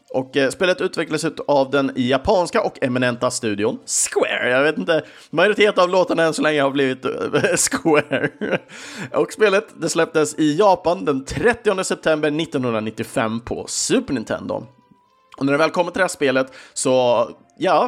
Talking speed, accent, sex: 155 wpm, Norwegian, male